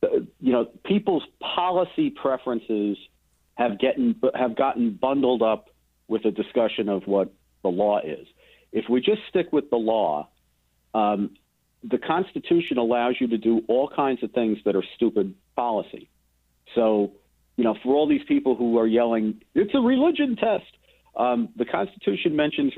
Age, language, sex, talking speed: 50-69, English, male, 155 wpm